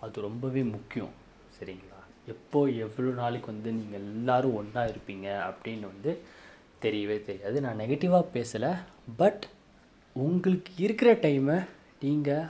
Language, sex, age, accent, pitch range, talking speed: Tamil, male, 20-39, native, 110-150 Hz, 115 wpm